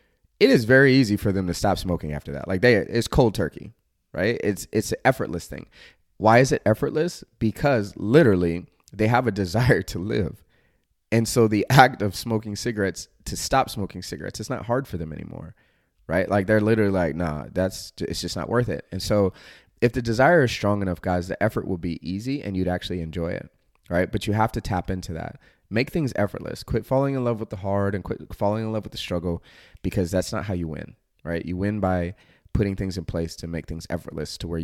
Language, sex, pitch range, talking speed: English, male, 85-110 Hz, 220 wpm